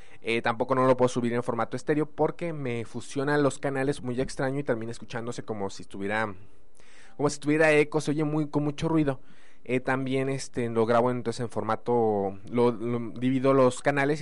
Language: Spanish